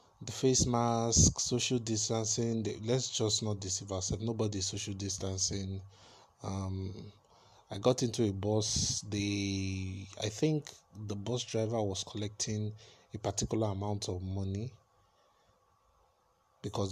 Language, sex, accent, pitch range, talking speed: English, male, Nigerian, 100-115 Hz, 120 wpm